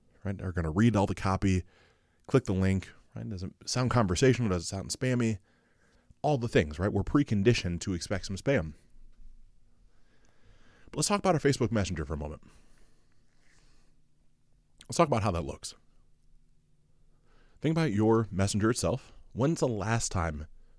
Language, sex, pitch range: English, male, 90-120 Hz